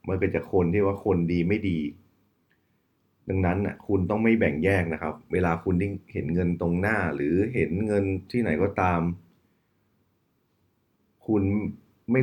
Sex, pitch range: male, 85-105 Hz